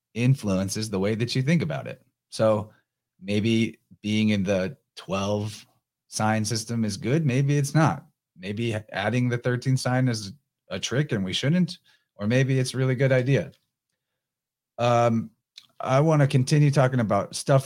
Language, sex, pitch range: English, male, 105-130 Hz